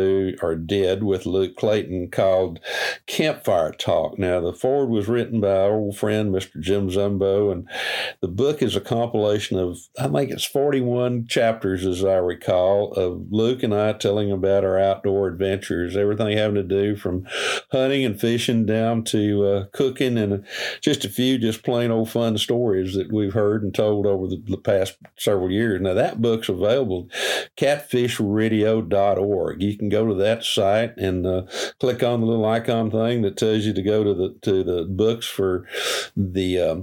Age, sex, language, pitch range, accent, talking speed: 50-69, male, English, 95-115 Hz, American, 175 wpm